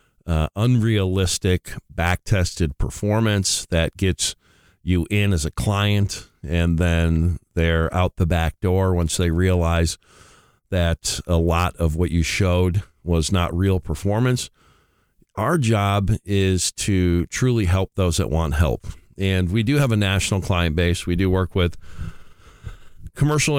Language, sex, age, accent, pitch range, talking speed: English, male, 40-59, American, 85-100 Hz, 140 wpm